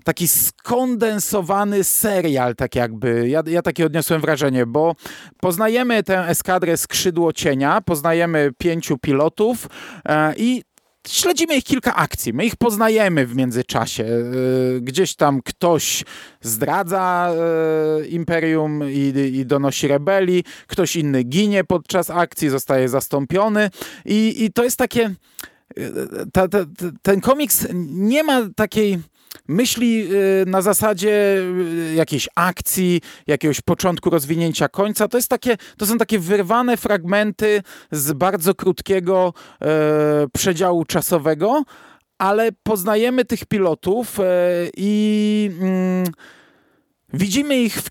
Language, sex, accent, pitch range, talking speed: Polish, male, native, 155-210 Hz, 105 wpm